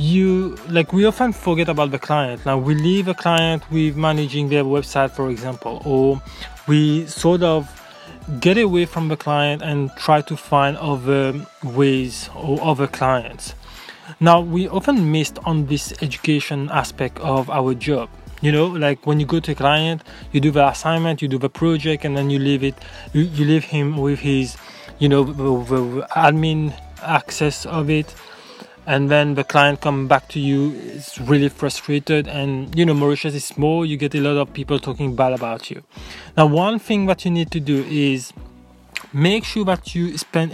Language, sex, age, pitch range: English, male, 20-39, 140-160 Hz